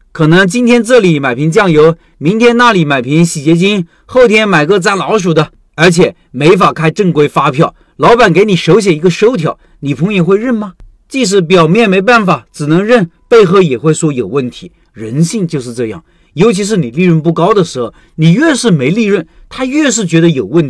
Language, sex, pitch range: Chinese, male, 155-215 Hz